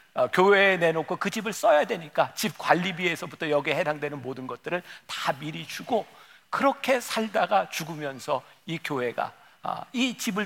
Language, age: Korean, 50-69